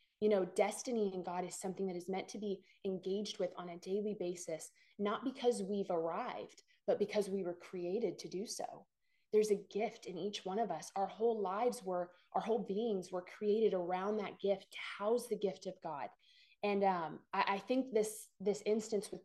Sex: female